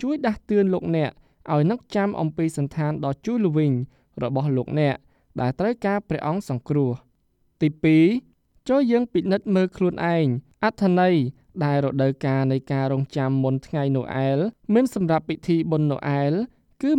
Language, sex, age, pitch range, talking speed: English, male, 20-39, 140-195 Hz, 50 wpm